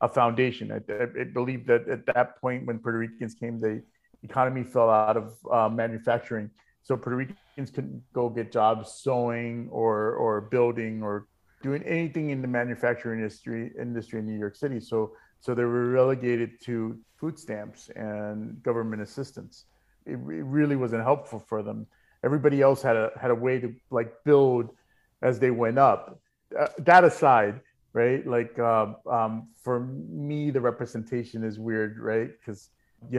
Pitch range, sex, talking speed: 110-125 Hz, male, 165 wpm